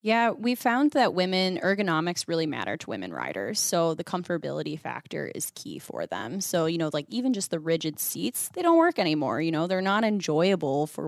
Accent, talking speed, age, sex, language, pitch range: American, 205 wpm, 20-39, female, English, 160-185 Hz